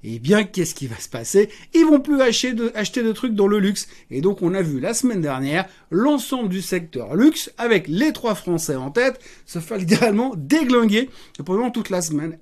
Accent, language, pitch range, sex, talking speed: French, French, 170-230 Hz, male, 220 wpm